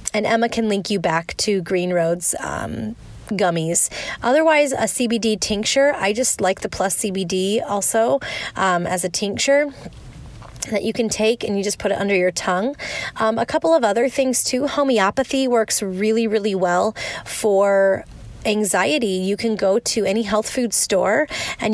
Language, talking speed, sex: English, 170 wpm, female